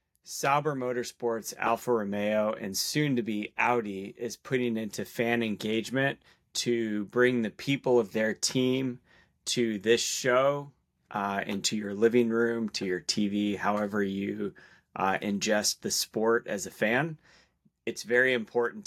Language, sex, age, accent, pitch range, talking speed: English, male, 30-49, American, 105-125 Hz, 135 wpm